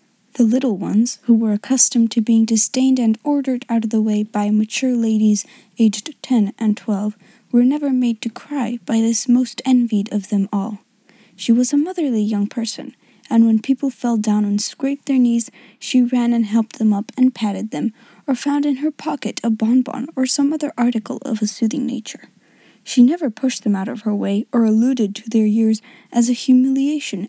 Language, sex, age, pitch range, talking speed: English, female, 20-39, 220-275 Hz, 195 wpm